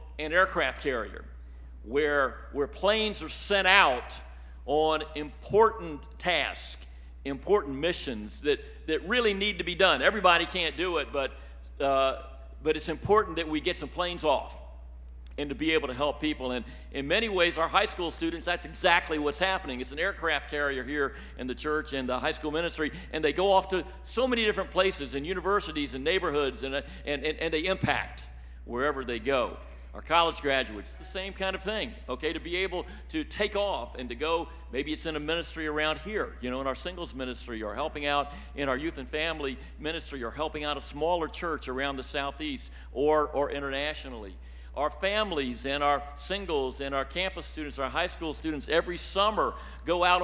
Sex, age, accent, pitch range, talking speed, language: male, 50-69, American, 135-180 Hz, 190 wpm, English